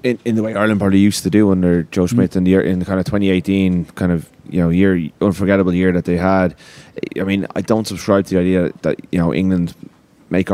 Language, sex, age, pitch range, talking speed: English, male, 20-39, 85-95 Hz, 240 wpm